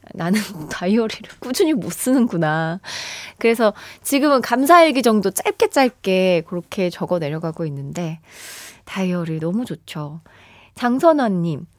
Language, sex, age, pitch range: Korean, female, 20-39, 180-270 Hz